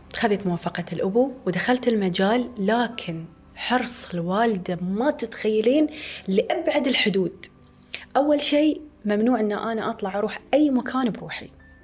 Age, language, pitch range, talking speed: 30-49, Arabic, 190-245 Hz, 110 wpm